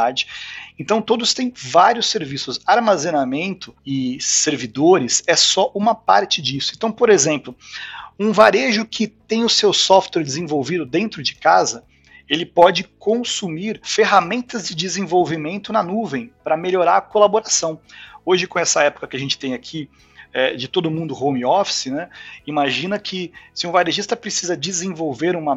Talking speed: 145 wpm